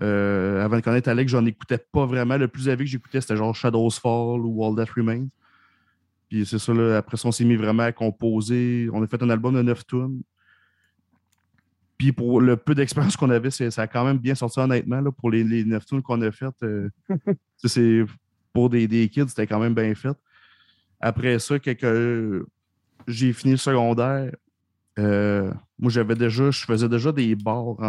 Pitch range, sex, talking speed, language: 110-125 Hz, male, 200 wpm, French